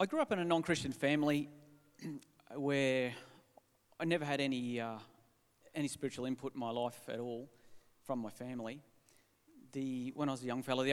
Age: 40-59